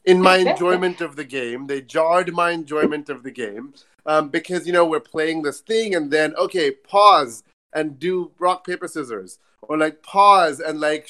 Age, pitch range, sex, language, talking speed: 30-49, 140-180 Hz, male, English, 190 wpm